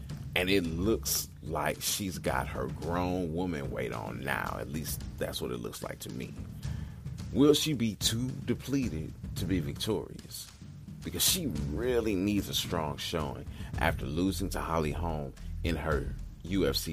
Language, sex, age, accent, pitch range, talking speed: English, male, 40-59, American, 75-100 Hz, 155 wpm